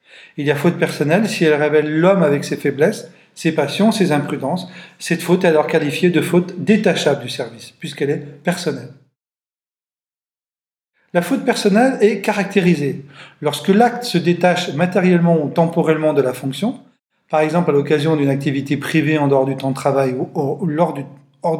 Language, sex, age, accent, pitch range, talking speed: French, male, 40-59, French, 145-180 Hz, 165 wpm